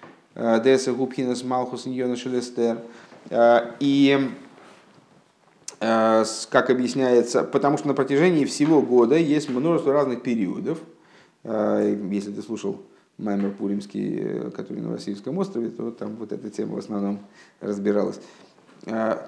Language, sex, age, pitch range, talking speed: Russian, male, 30-49, 105-130 Hz, 110 wpm